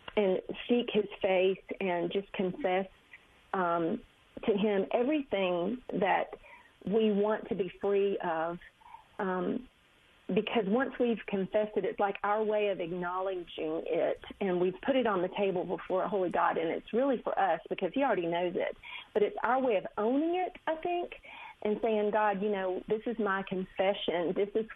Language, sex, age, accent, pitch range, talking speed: English, female, 40-59, American, 180-215 Hz, 175 wpm